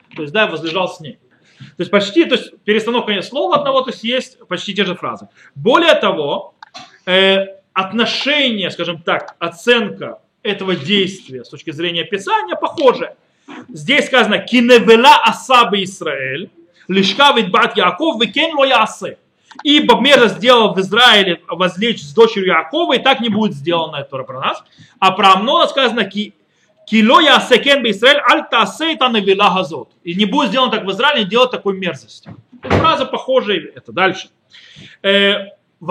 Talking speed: 150 wpm